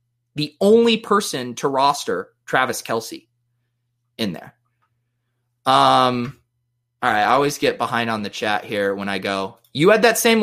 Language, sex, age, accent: English, male, 20-39, American